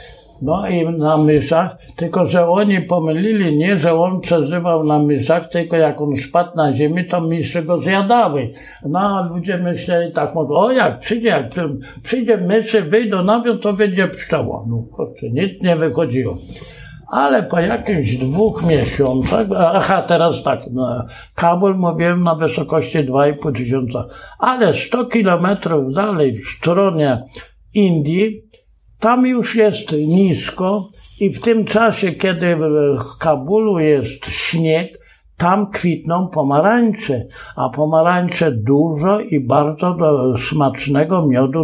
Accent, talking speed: native, 130 wpm